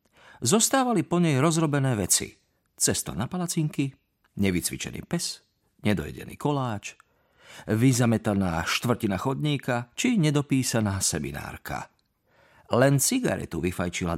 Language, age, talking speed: Slovak, 40-59, 90 wpm